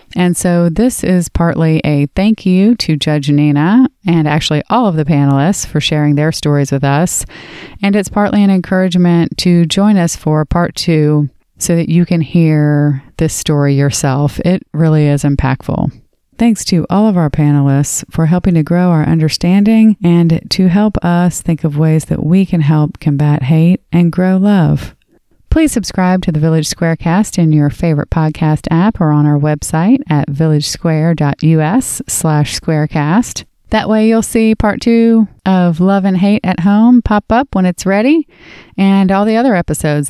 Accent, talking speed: American, 170 wpm